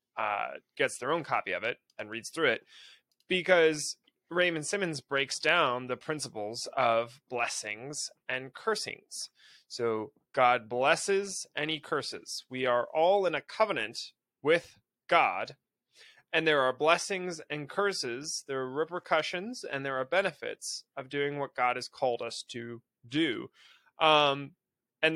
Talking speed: 140 wpm